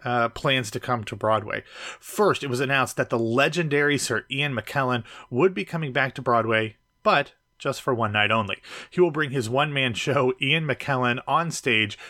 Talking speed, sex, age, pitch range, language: 190 wpm, male, 30-49, 115-140 Hz, English